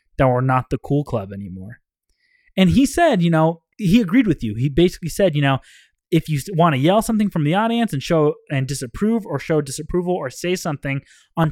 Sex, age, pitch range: male, 20-39, 130-175 Hz